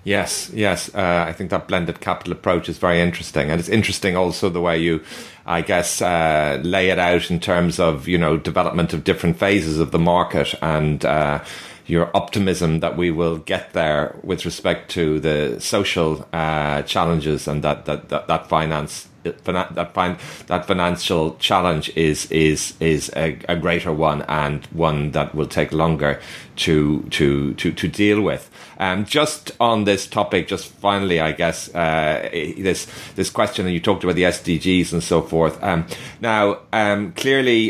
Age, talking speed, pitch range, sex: 30-49, 175 wpm, 80-95 Hz, male